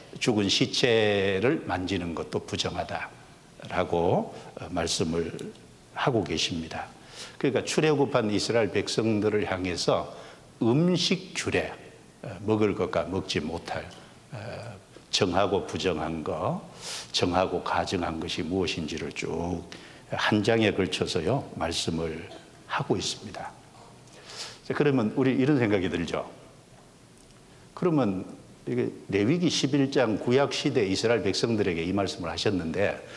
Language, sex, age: Korean, male, 60-79